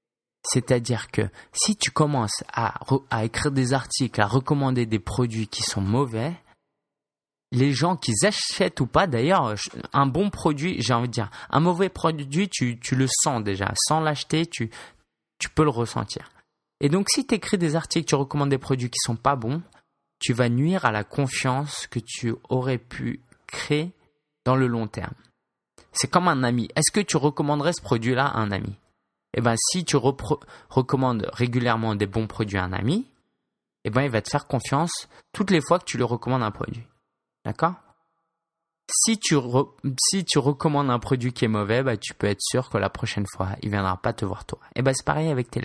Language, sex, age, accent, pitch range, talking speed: French, male, 20-39, French, 115-150 Hz, 200 wpm